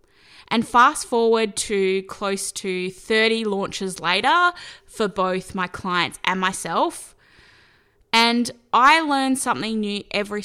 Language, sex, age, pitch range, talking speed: English, female, 10-29, 190-240 Hz, 120 wpm